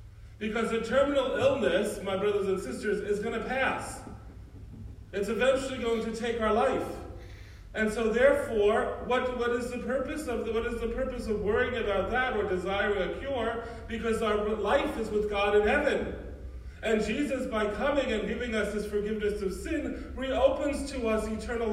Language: English